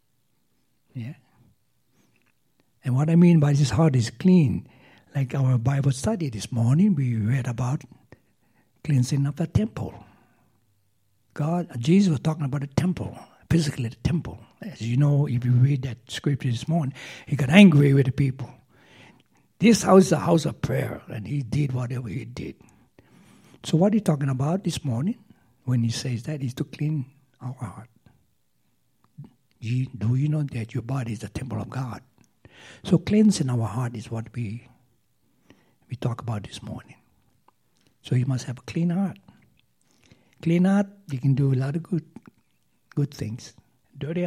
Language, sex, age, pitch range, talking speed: English, male, 60-79, 120-155 Hz, 165 wpm